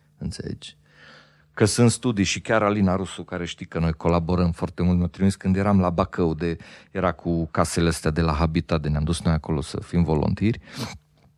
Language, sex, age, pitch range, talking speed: Romanian, male, 40-59, 85-110 Hz, 190 wpm